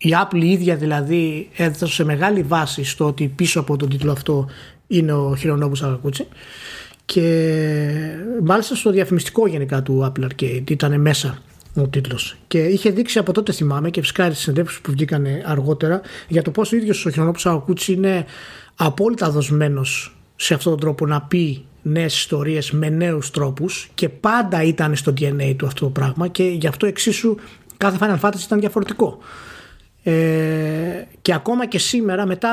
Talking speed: 165 wpm